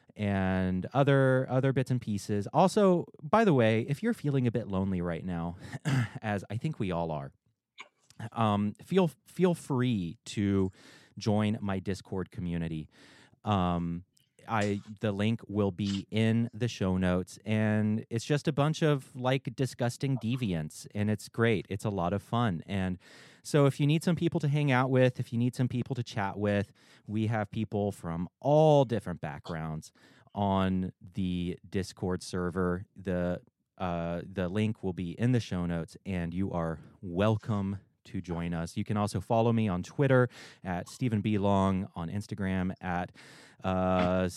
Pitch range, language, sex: 95-125 Hz, English, male